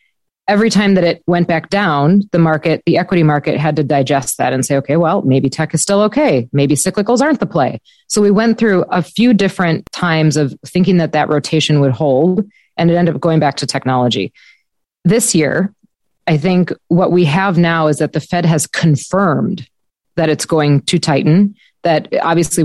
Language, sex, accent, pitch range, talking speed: English, female, American, 150-190 Hz, 195 wpm